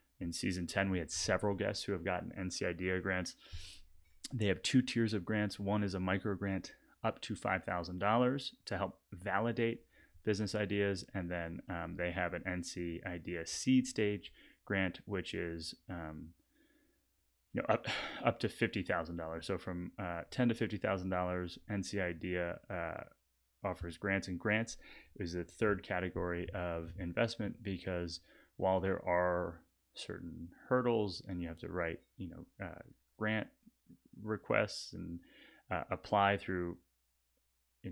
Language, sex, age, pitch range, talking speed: English, male, 30-49, 85-100 Hz, 155 wpm